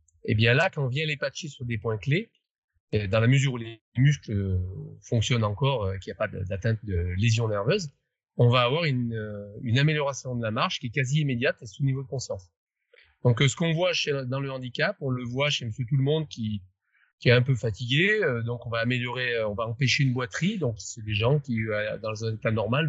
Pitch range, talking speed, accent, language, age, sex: 110-145 Hz, 230 wpm, French, French, 30-49, male